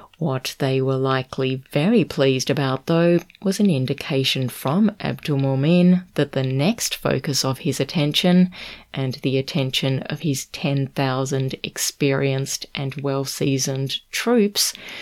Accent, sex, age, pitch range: Australian, female, 30-49, 135-165 Hz